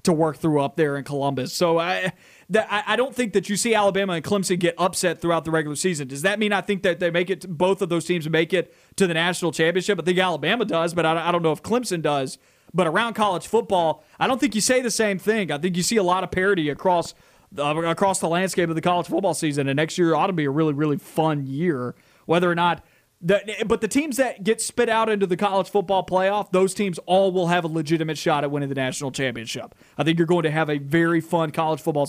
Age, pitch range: 30-49, 155-195 Hz